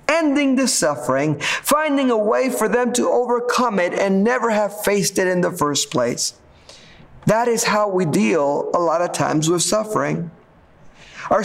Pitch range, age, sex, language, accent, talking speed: 160-240 Hz, 50-69, male, English, American, 170 wpm